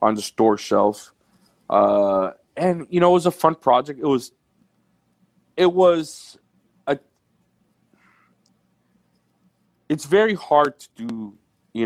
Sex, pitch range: male, 105-125 Hz